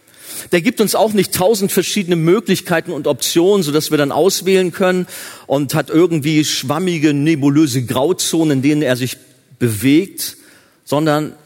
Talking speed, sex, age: 140 wpm, male, 40-59